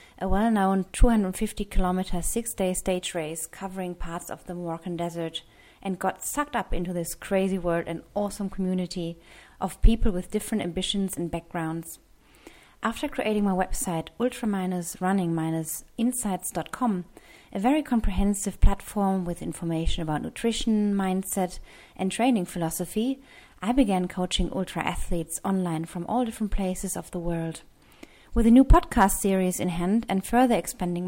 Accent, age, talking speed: German, 30-49, 135 wpm